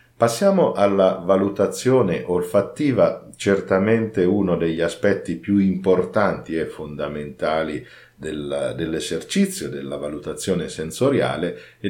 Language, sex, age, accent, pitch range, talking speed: Italian, male, 50-69, native, 85-115 Hz, 85 wpm